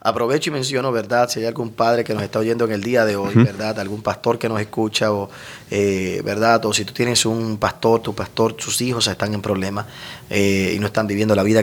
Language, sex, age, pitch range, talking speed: Spanish, male, 30-49, 100-115 Hz, 230 wpm